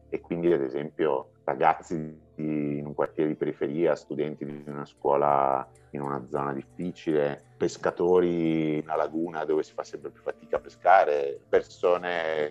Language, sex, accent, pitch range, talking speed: Italian, male, native, 70-85 Hz, 155 wpm